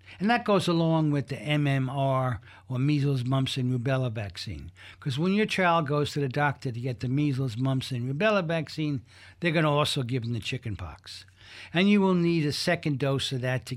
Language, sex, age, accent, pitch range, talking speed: English, male, 60-79, American, 110-150 Hz, 200 wpm